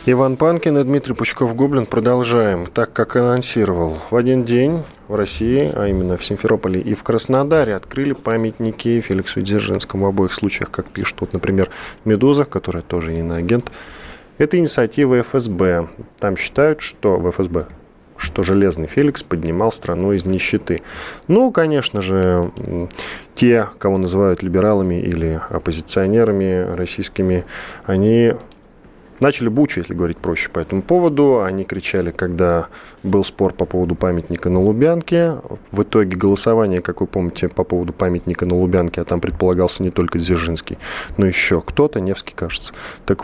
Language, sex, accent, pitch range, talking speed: Russian, male, native, 90-120 Hz, 145 wpm